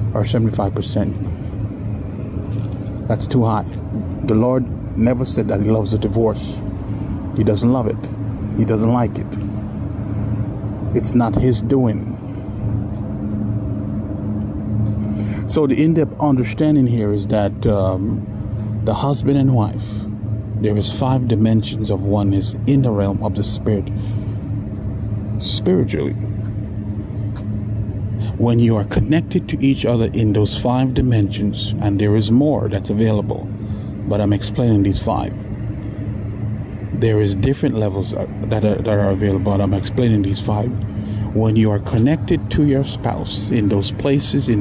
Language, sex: English, male